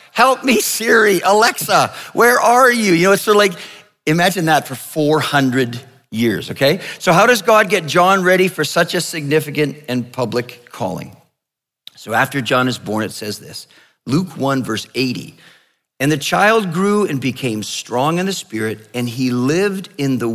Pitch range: 125-185 Hz